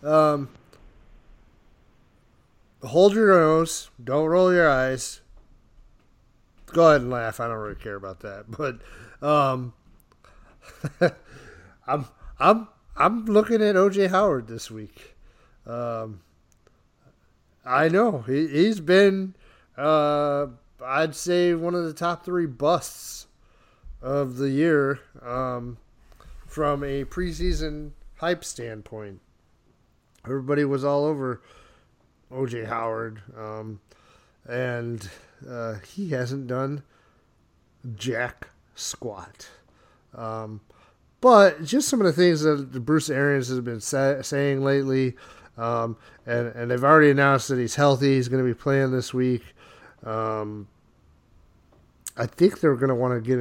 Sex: male